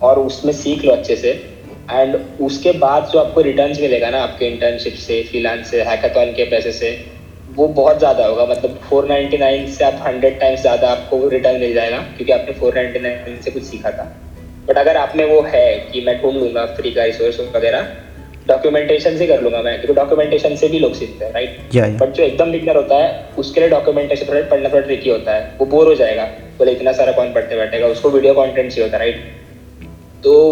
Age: 20-39